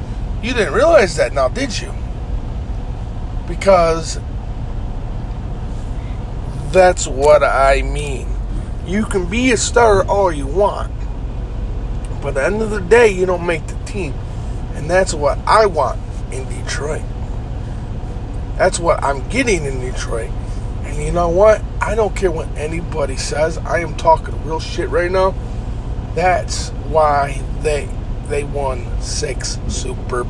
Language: English